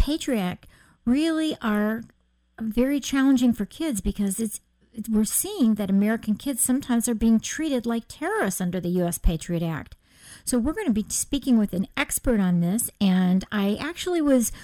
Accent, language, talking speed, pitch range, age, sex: American, English, 170 wpm, 195-255 Hz, 50-69, female